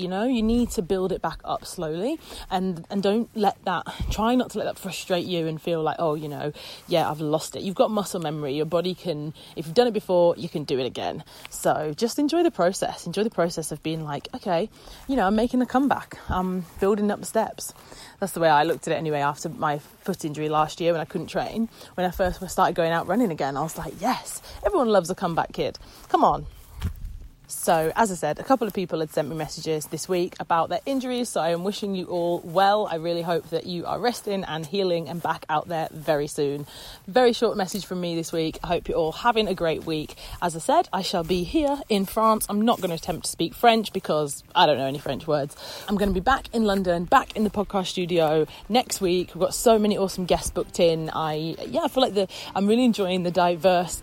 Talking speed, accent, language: 245 wpm, British, English